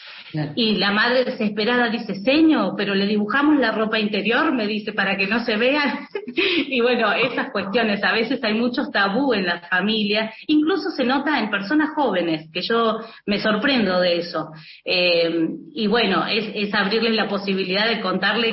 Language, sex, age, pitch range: Spanish, female, 30-49, 185-235 Hz